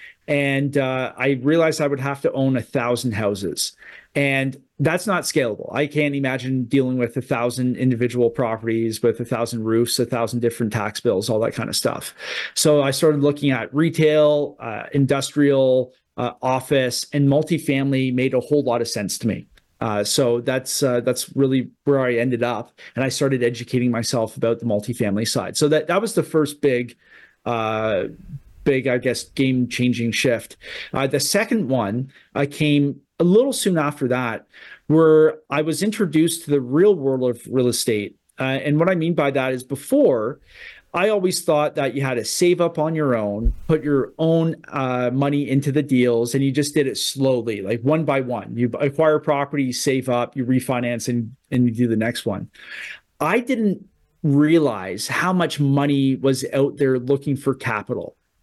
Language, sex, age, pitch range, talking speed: English, male, 40-59, 125-150 Hz, 185 wpm